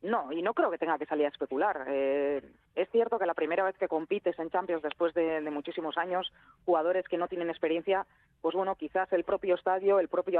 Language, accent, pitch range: Spanish, Spanish, 160-195 Hz